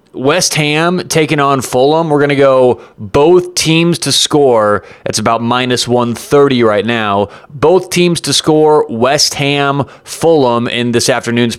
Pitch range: 120-145 Hz